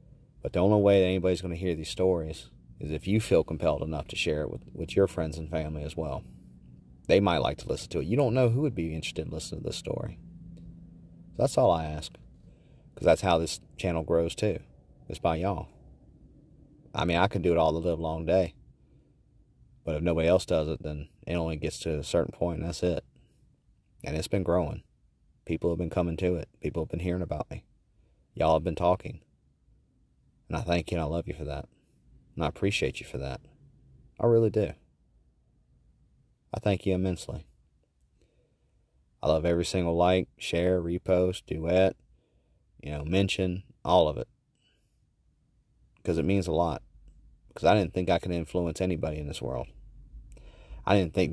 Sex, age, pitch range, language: male, 30-49, 80-95 Hz, English